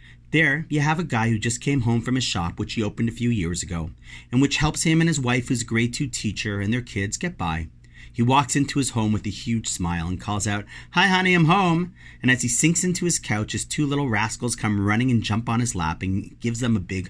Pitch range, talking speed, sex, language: 100-140 Hz, 265 wpm, male, English